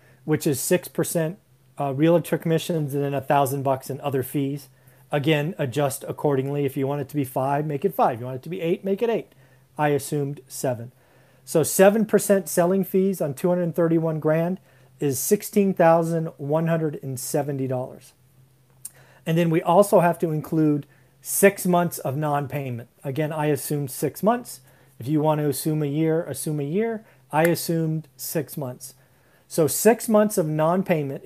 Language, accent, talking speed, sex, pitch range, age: English, American, 160 wpm, male, 135-170 Hz, 40-59